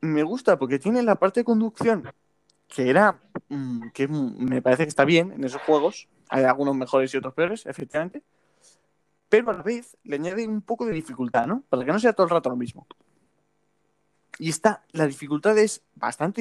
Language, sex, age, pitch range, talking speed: Spanish, male, 20-39, 130-185 Hz, 190 wpm